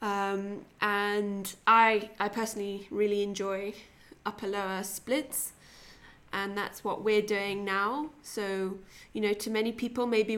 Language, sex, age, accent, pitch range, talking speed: English, female, 20-39, British, 205-235 Hz, 135 wpm